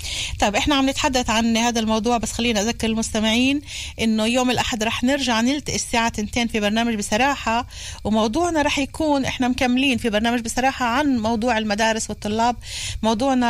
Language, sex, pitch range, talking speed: Hebrew, female, 210-250 Hz, 140 wpm